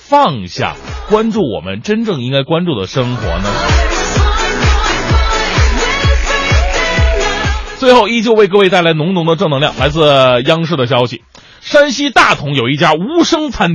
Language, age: Chinese, 30-49